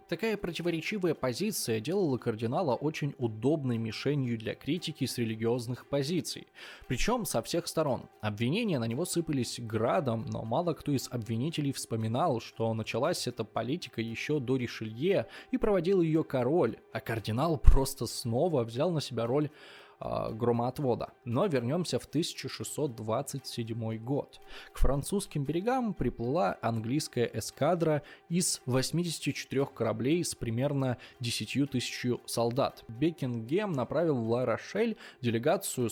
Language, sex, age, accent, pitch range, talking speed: Russian, male, 20-39, native, 120-165 Hz, 120 wpm